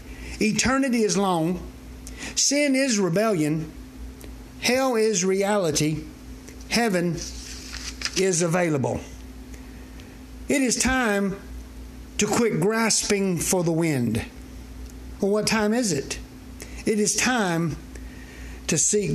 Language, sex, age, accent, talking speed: English, male, 60-79, American, 95 wpm